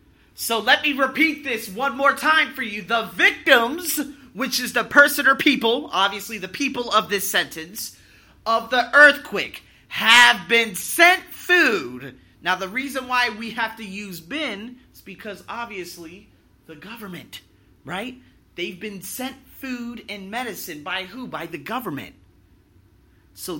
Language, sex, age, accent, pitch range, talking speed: English, male, 30-49, American, 155-235 Hz, 150 wpm